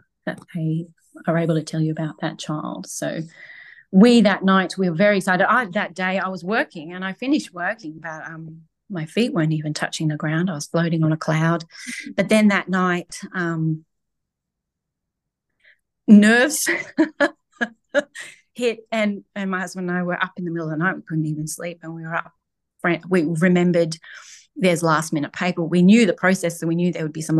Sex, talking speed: female, 195 wpm